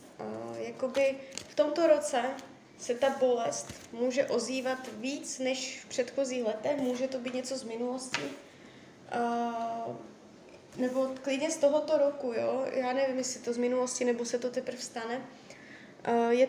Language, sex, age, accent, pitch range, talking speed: Czech, female, 20-39, native, 240-270 Hz, 140 wpm